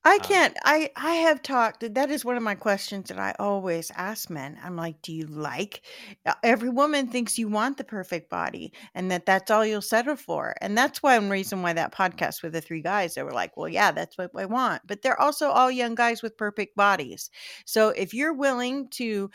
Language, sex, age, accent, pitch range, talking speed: English, female, 40-59, American, 185-245 Hz, 225 wpm